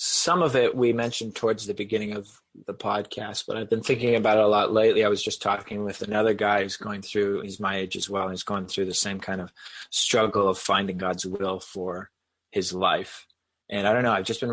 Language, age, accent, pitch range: English, 20-39, American, 95-110 Hz